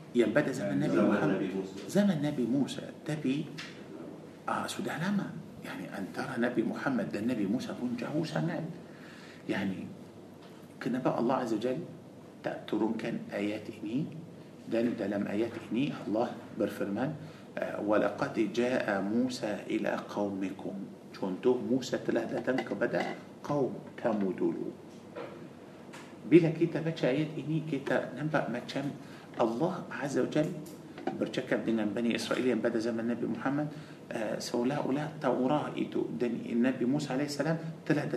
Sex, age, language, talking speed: male, 50-69, Malay, 115 wpm